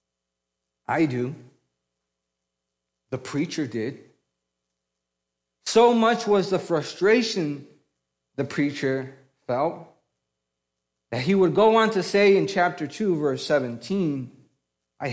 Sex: male